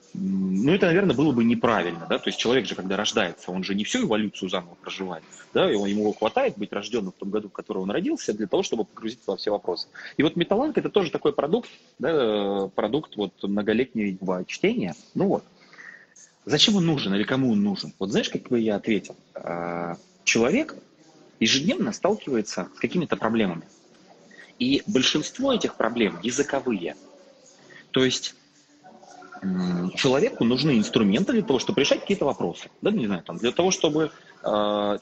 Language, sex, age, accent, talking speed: Russian, male, 30-49, native, 170 wpm